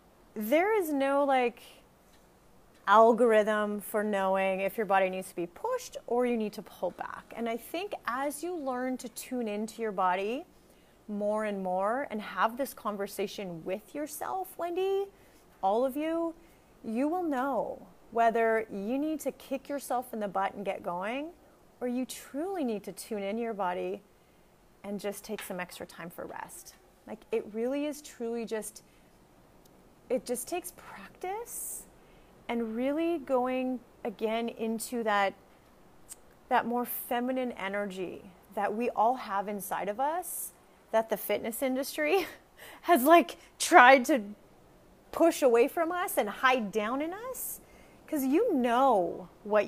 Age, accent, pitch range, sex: 30-49, American, 205-275 Hz, female